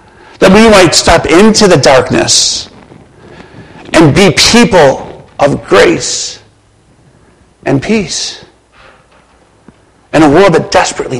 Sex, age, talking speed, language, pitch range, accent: male, 50-69, 100 wpm, English, 115-165 Hz, American